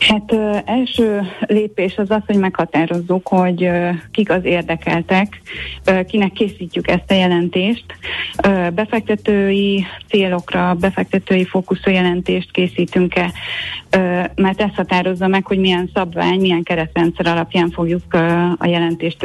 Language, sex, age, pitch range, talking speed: Hungarian, female, 30-49, 175-195 Hz, 130 wpm